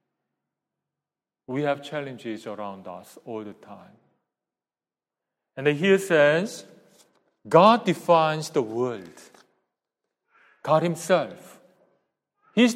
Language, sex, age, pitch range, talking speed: English, male, 40-59, 135-175 Hz, 85 wpm